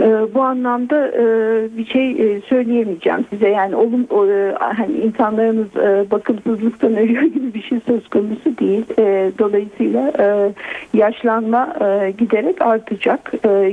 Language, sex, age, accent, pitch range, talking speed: Turkish, female, 50-69, native, 205-240 Hz, 95 wpm